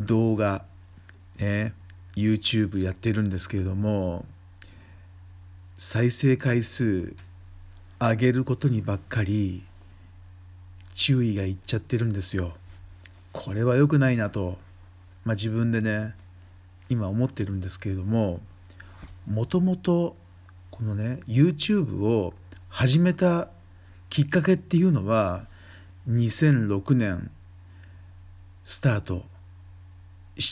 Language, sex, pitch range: Japanese, male, 90-125 Hz